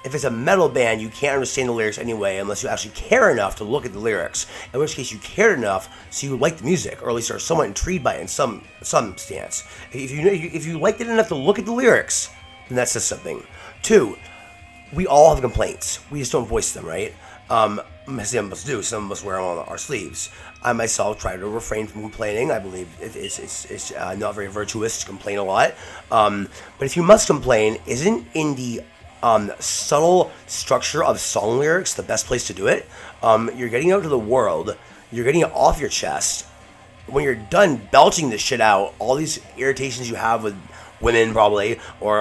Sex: male